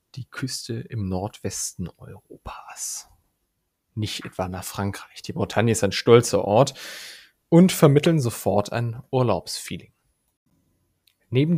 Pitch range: 100-145 Hz